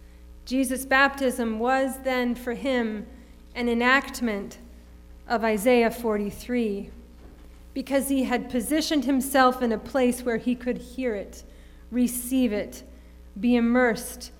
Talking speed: 115 wpm